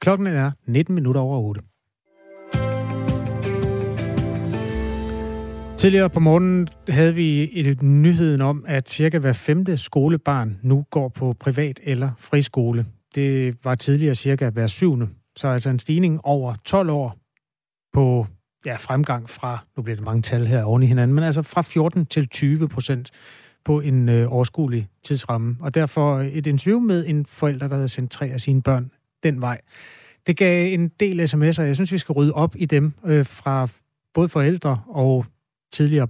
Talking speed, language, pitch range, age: 165 wpm, Danish, 120-150 Hz, 30-49